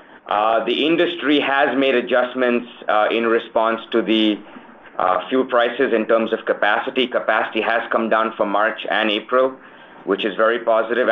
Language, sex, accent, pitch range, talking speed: Portuguese, male, Indian, 115-135 Hz, 160 wpm